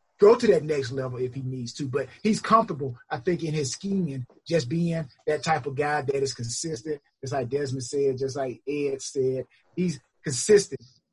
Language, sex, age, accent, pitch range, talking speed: English, male, 30-49, American, 135-180 Hz, 200 wpm